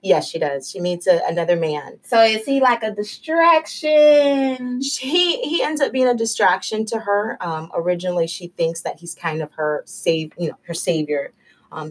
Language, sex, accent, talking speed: English, female, American, 190 wpm